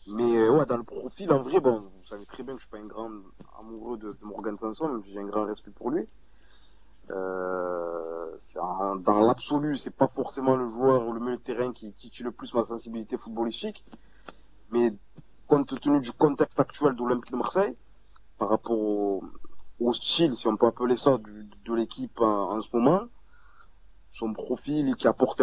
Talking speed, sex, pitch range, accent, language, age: 195 wpm, male, 105-130 Hz, French, French, 20-39